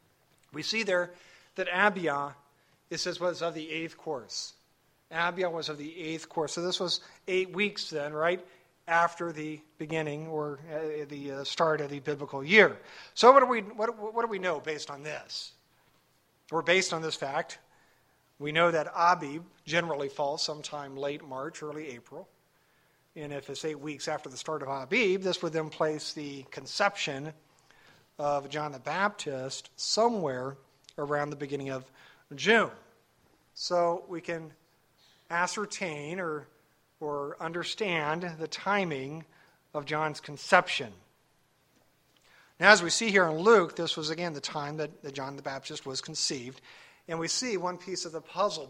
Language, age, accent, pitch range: English, 50-69, American, 145-175 Hz